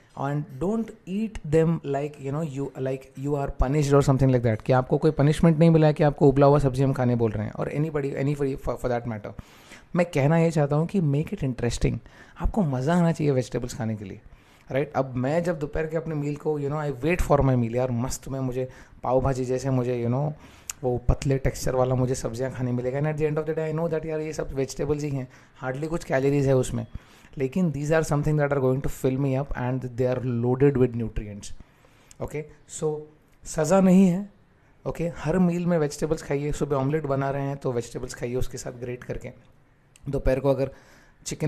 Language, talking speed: English, 140 wpm